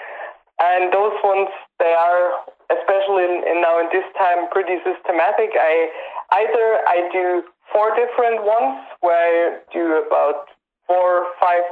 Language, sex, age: German, male, 20-39